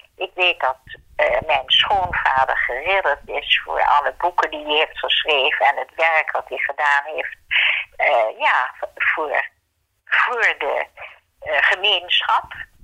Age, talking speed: 50-69, 130 wpm